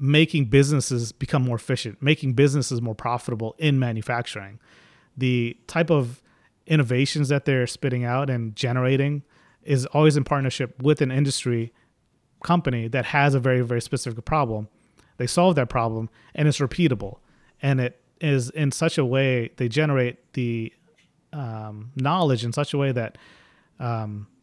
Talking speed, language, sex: 150 wpm, English, male